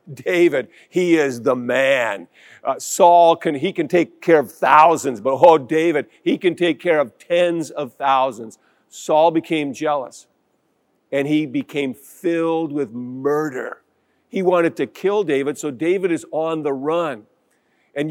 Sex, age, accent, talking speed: male, 50-69, American, 150 wpm